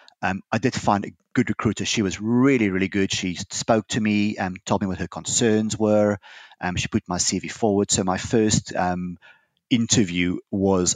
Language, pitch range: English, 95-110 Hz